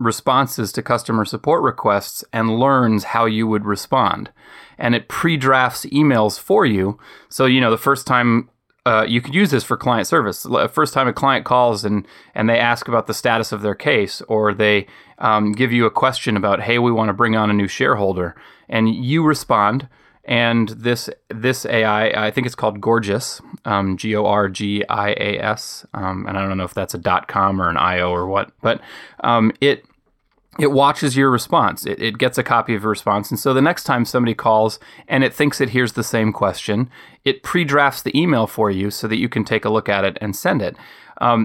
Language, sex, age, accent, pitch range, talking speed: English, male, 30-49, American, 105-130 Hz, 205 wpm